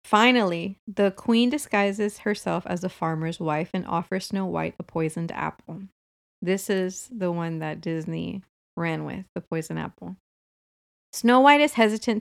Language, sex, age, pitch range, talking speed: English, female, 30-49, 175-215 Hz, 150 wpm